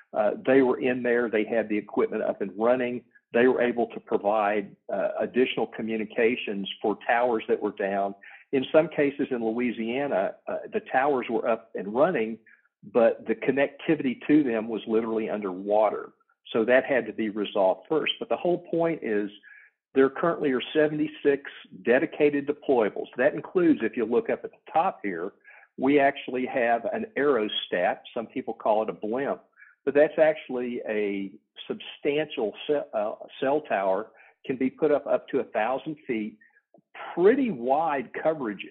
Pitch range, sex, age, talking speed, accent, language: 105-150 Hz, male, 50-69, 160 wpm, American, English